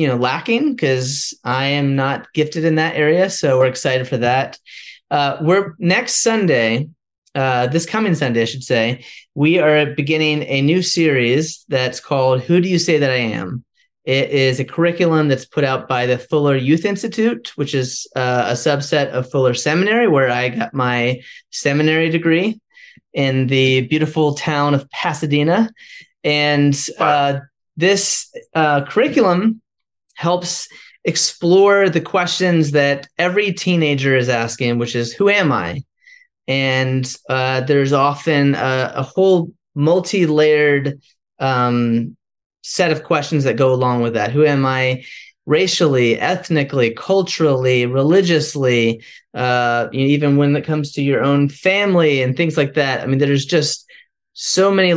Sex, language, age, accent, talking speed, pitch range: male, English, 30-49, American, 145 wpm, 130-170 Hz